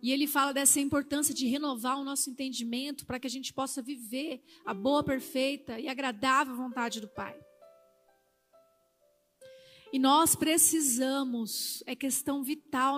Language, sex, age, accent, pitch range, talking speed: Portuguese, female, 40-59, Brazilian, 230-280 Hz, 140 wpm